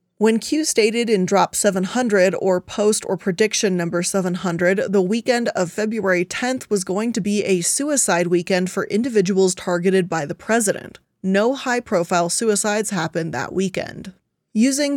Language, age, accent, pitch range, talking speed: English, 20-39, American, 185-225 Hz, 150 wpm